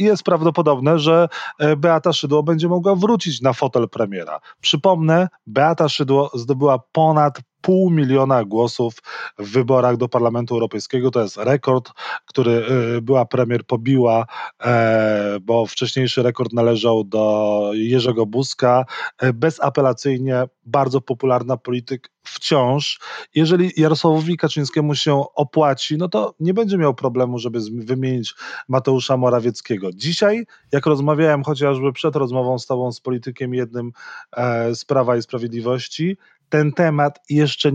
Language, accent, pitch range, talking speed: Polish, native, 120-150 Hz, 120 wpm